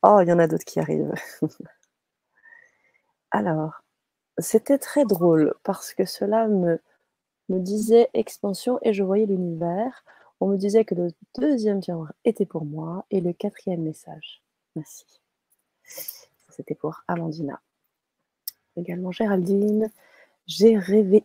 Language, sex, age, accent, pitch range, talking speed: French, female, 30-49, French, 180-220 Hz, 130 wpm